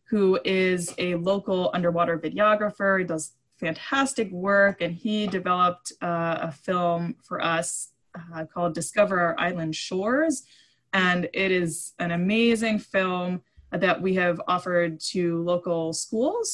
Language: English